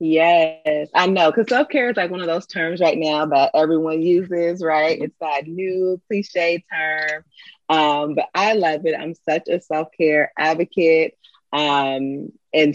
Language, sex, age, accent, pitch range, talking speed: English, female, 30-49, American, 140-165 Hz, 160 wpm